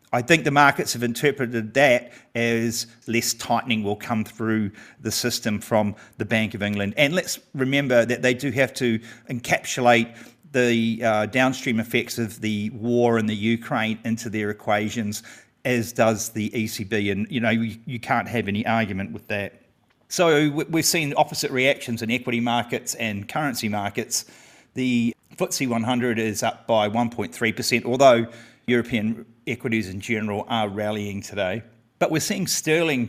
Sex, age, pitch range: male, 40-59, 110-125 Hz